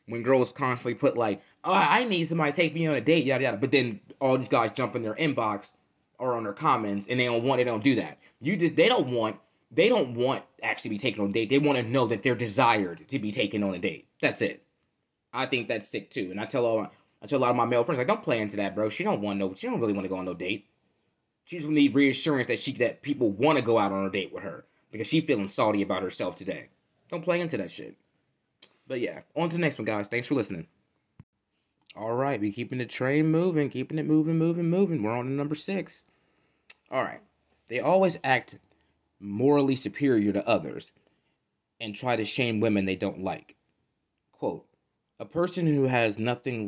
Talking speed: 235 wpm